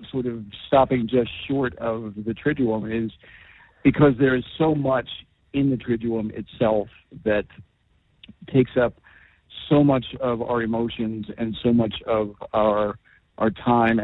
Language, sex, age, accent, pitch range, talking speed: English, male, 50-69, American, 110-125 Hz, 140 wpm